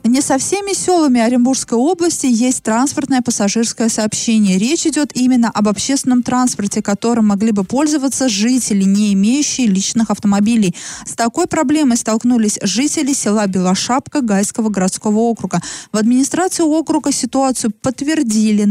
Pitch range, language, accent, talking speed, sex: 205-255 Hz, Russian, native, 130 wpm, female